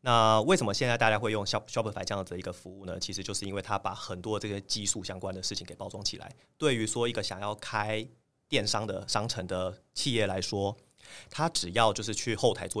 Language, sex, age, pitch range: Chinese, male, 30-49, 95-110 Hz